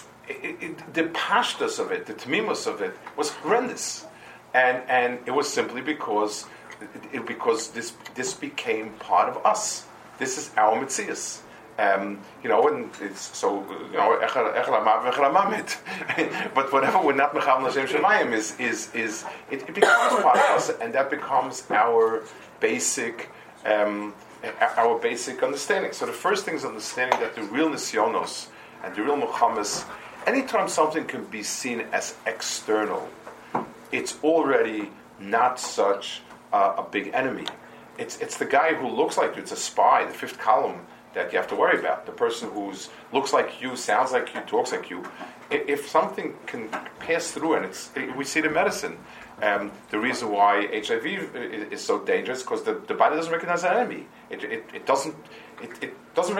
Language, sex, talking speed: English, male, 170 wpm